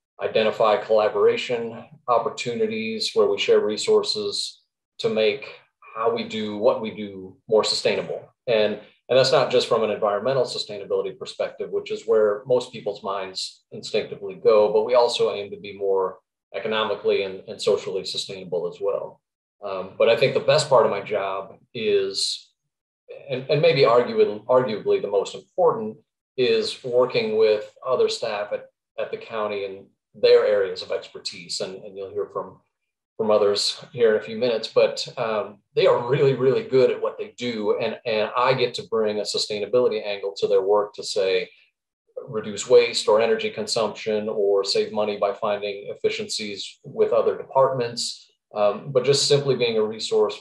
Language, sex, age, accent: English, male, 30-49, American